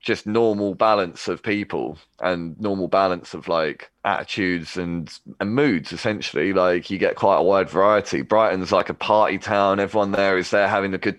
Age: 20-39